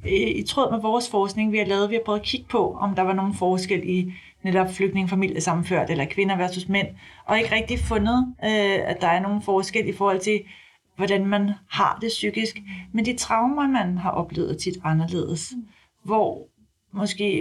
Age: 40-59